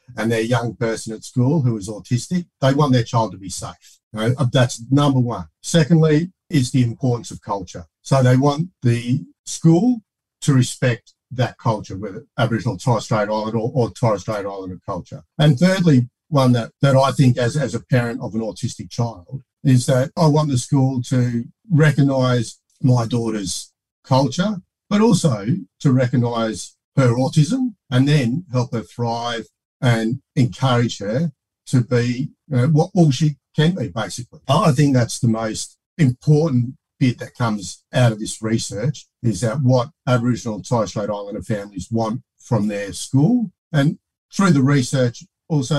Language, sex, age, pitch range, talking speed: English, male, 50-69, 115-140 Hz, 165 wpm